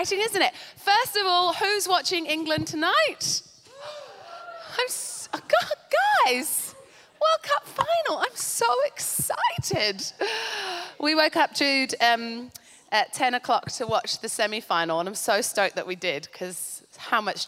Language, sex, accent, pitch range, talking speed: English, female, British, 220-310 Hz, 135 wpm